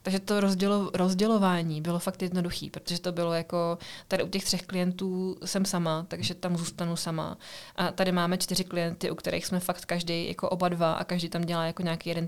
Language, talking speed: Czech, 200 wpm